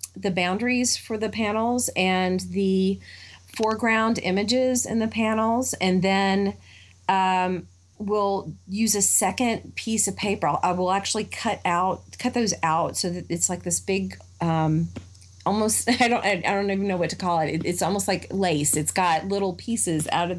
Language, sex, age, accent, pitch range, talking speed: English, female, 30-49, American, 165-200 Hz, 170 wpm